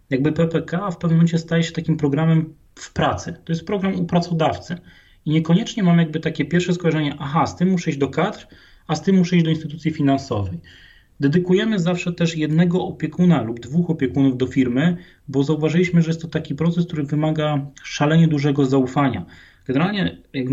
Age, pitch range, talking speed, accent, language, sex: 30-49, 130-165 Hz, 180 wpm, native, Polish, male